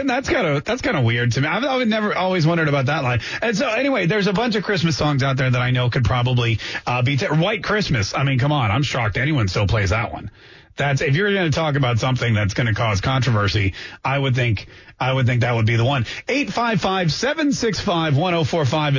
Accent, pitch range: American, 120-165 Hz